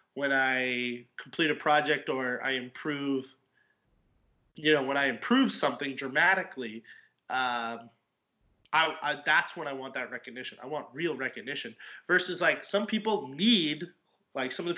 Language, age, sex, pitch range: English, 30-49, male, 130-175 Hz